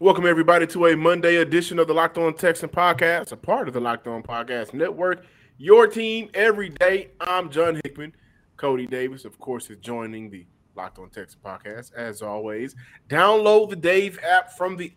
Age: 20-39